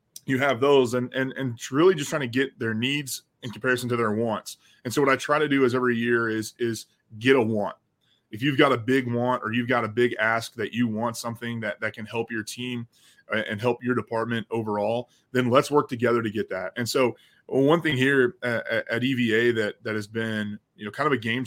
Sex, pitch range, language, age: male, 115-130 Hz, English, 20-39